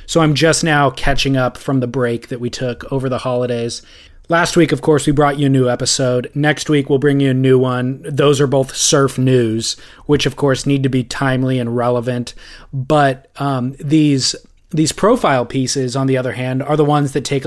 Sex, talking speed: male, 215 wpm